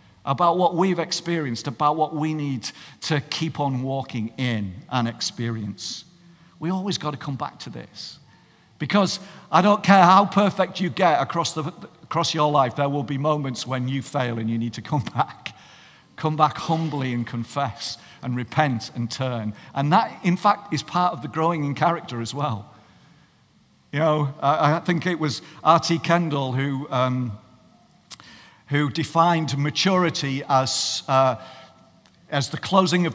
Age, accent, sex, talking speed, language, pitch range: 50-69, British, male, 165 wpm, English, 130-170 Hz